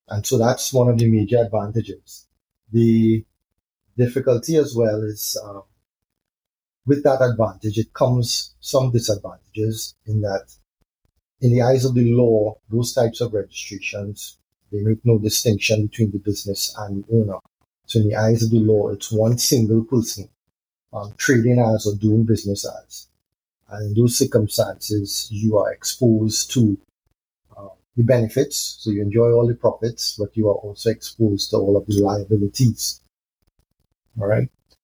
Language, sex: English, male